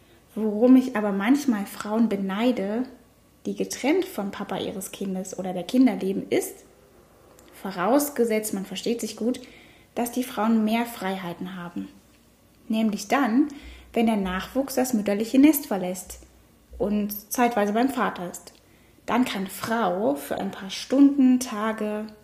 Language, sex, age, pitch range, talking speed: German, female, 10-29, 200-250 Hz, 130 wpm